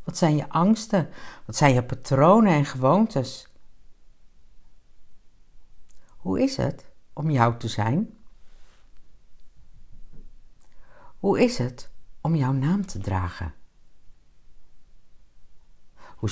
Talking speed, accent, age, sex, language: 95 wpm, Dutch, 60-79, female, Dutch